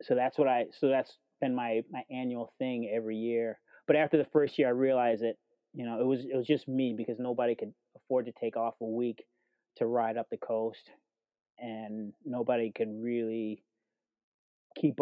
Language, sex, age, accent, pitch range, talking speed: English, male, 30-49, American, 110-120 Hz, 190 wpm